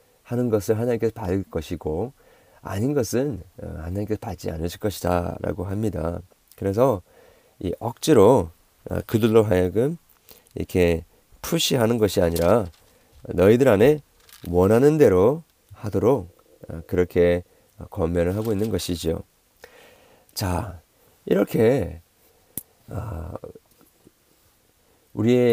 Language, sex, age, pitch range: Korean, male, 40-59, 90-125 Hz